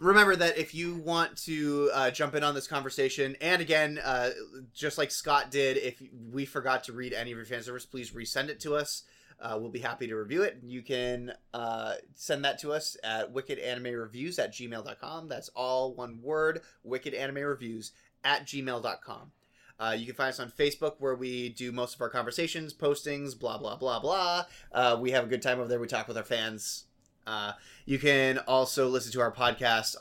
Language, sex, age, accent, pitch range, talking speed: English, male, 20-39, American, 115-145 Hz, 195 wpm